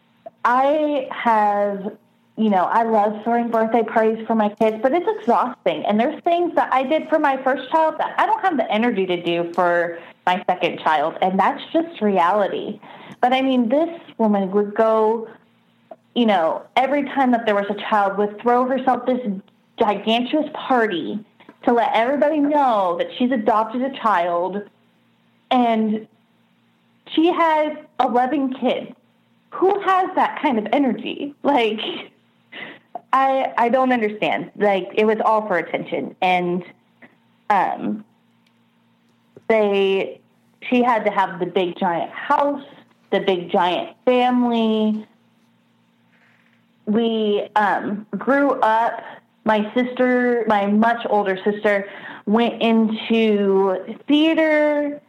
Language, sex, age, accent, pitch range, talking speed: English, female, 20-39, American, 205-265 Hz, 135 wpm